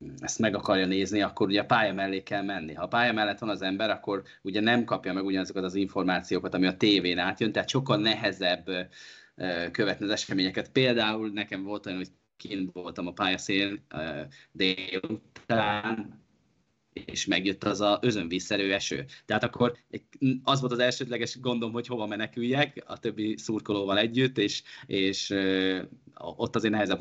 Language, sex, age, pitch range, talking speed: Hungarian, male, 20-39, 90-110 Hz, 160 wpm